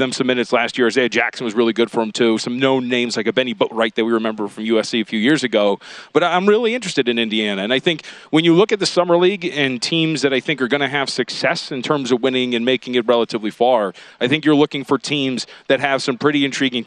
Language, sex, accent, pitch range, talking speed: English, male, American, 120-155 Hz, 265 wpm